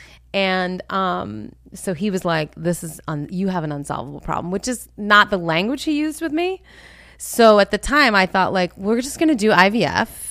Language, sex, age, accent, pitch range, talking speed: English, female, 30-49, American, 155-200 Hz, 210 wpm